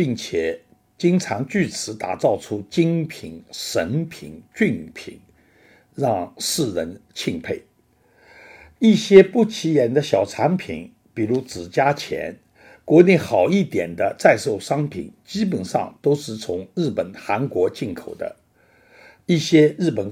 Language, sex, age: Chinese, male, 60-79